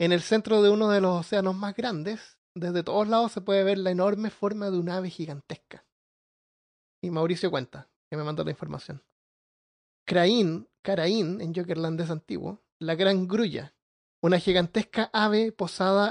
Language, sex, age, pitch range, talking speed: Spanish, male, 30-49, 175-210 Hz, 160 wpm